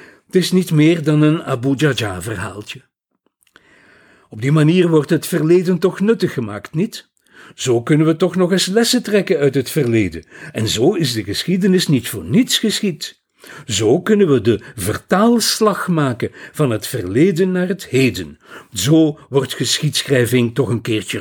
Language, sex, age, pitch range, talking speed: Dutch, male, 60-79, 120-175 Hz, 160 wpm